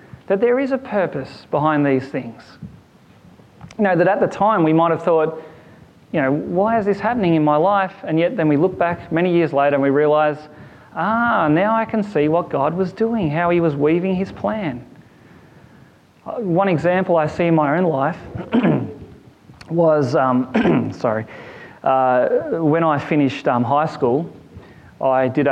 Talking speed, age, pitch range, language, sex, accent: 175 wpm, 30-49, 130-175 Hz, English, male, Australian